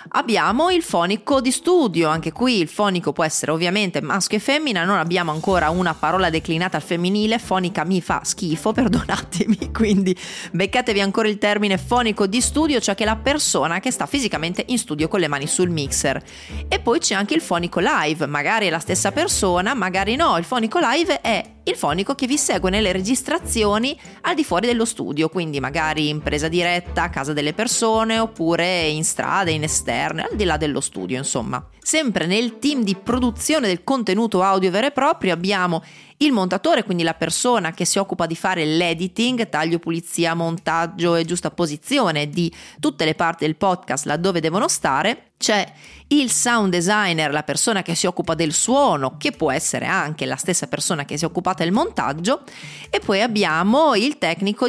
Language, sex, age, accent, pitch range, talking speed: Italian, female, 30-49, native, 165-225 Hz, 185 wpm